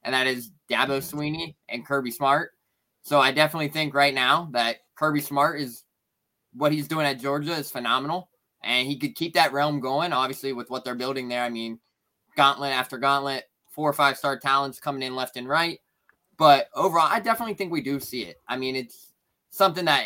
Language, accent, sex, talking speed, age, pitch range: English, American, male, 200 wpm, 20-39, 130-150 Hz